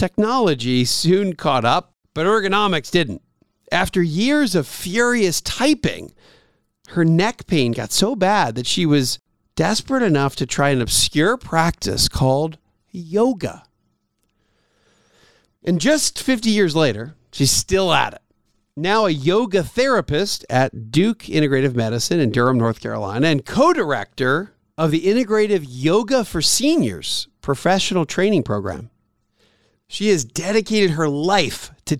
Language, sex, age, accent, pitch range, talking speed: English, male, 50-69, American, 125-195 Hz, 130 wpm